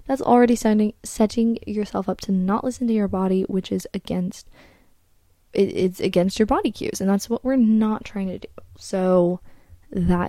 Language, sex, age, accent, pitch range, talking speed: English, female, 10-29, American, 185-240 Hz, 180 wpm